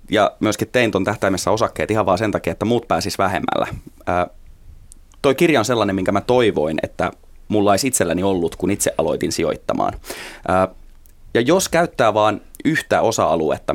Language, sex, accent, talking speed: Finnish, male, native, 160 wpm